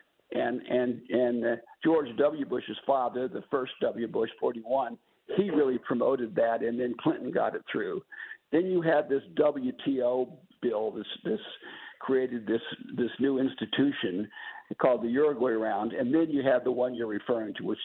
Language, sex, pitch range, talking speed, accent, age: English, male, 125-180 Hz, 165 wpm, American, 60-79